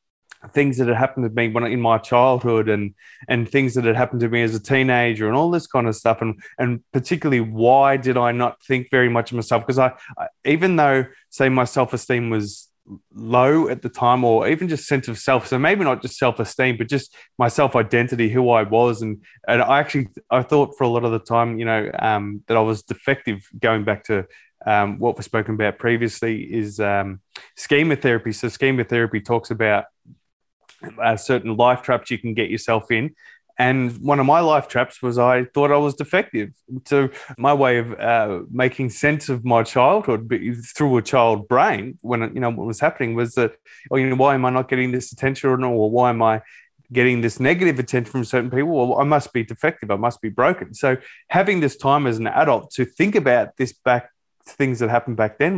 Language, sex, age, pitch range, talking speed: English, male, 20-39, 115-135 Hz, 215 wpm